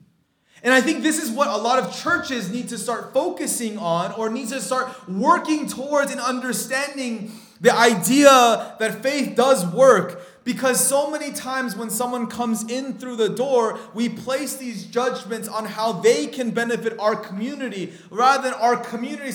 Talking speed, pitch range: 170 wpm, 220-270 Hz